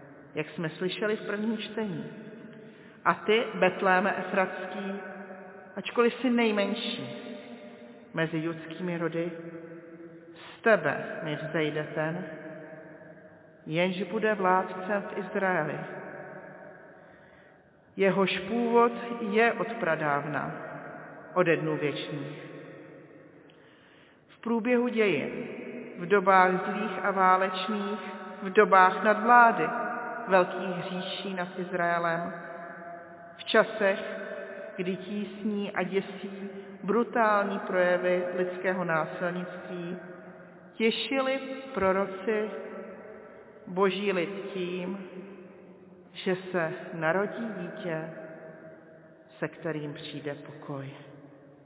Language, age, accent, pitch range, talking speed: Czech, 40-59, native, 165-210 Hz, 80 wpm